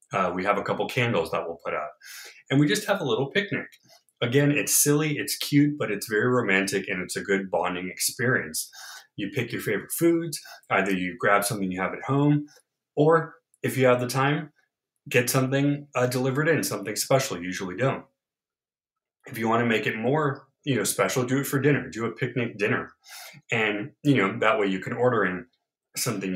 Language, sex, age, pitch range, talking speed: English, male, 20-39, 95-140 Hz, 205 wpm